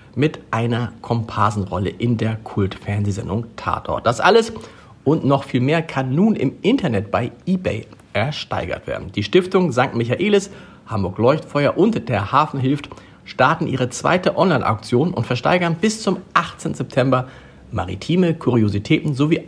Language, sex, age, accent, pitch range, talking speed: German, male, 50-69, German, 110-150 Hz, 130 wpm